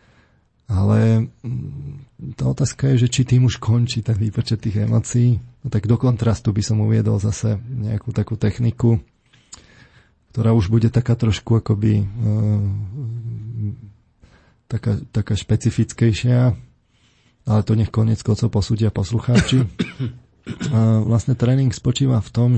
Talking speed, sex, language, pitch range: 115 wpm, male, Slovak, 110-120 Hz